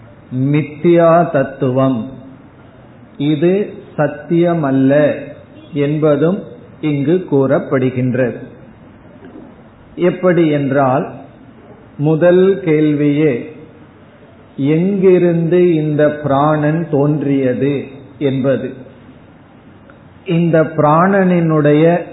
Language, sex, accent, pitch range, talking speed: Tamil, male, native, 135-170 Hz, 45 wpm